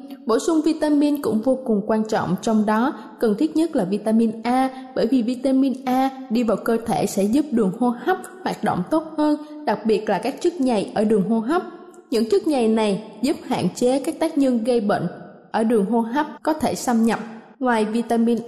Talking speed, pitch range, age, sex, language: 210 wpm, 220-280 Hz, 20-39, female, Vietnamese